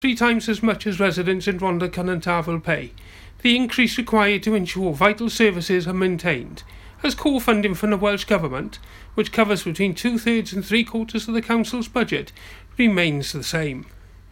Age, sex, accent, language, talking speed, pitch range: 40-59, male, British, English, 165 wpm, 170-220 Hz